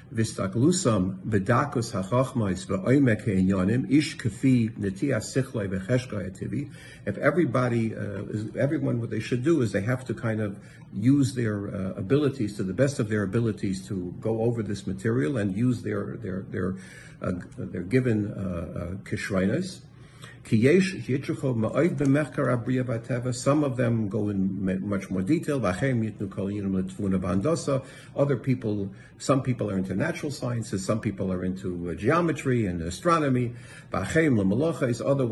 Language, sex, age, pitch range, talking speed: English, male, 50-69, 100-135 Hz, 110 wpm